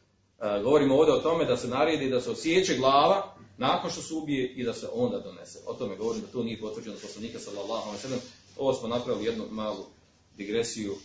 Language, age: Croatian, 40-59